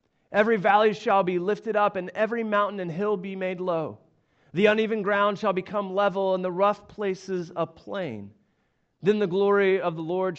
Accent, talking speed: American, 185 wpm